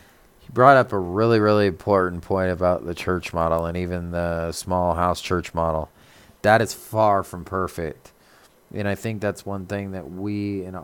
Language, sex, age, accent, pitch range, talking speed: English, male, 30-49, American, 90-105 Hz, 175 wpm